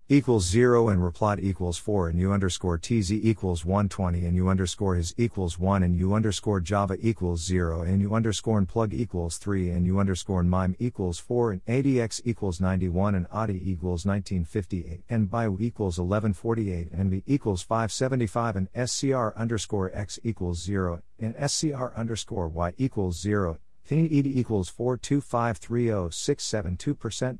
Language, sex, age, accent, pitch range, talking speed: Turkish, male, 50-69, American, 90-115 Hz, 165 wpm